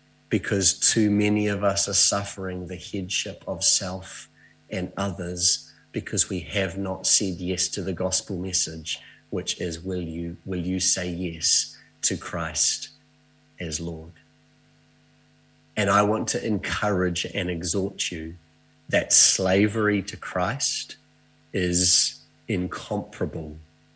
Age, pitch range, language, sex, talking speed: 30-49, 85-120 Hz, English, male, 125 wpm